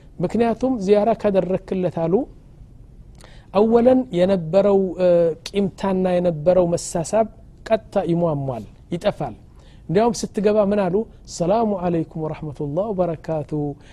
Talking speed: 90 wpm